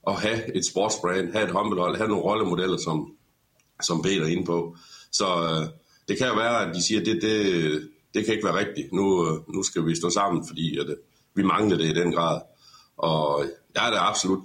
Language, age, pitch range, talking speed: Danish, 60-79, 85-95 Hz, 225 wpm